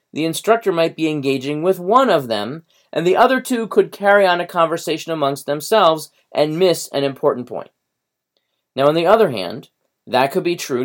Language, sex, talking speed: English, male, 190 wpm